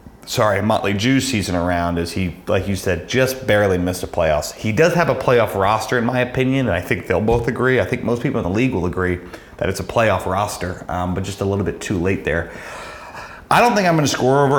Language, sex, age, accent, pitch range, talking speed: English, male, 30-49, American, 90-115 Hz, 245 wpm